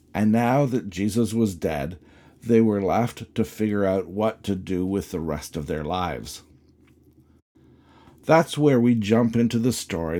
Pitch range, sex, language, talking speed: 90-125 Hz, male, English, 165 wpm